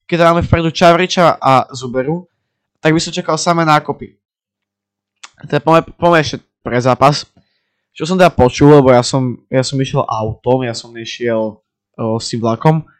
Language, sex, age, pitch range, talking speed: Slovak, male, 20-39, 115-145 Hz, 150 wpm